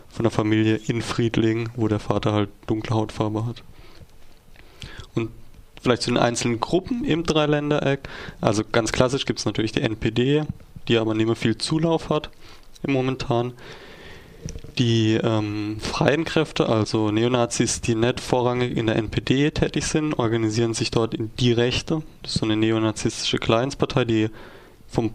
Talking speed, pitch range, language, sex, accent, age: 155 wpm, 110-130 Hz, German, male, German, 20-39